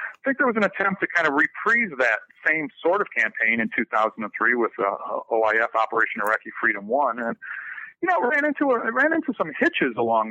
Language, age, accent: English, 40-59, American